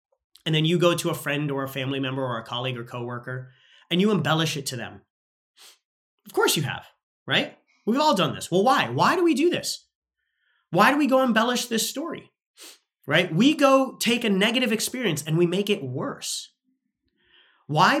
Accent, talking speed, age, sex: American, 195 wpm, 30-49, male